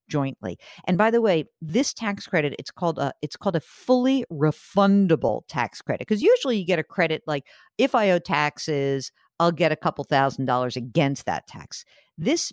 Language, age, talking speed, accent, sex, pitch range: English, 50-69, 185 wpm, American, female, 150-200 Hz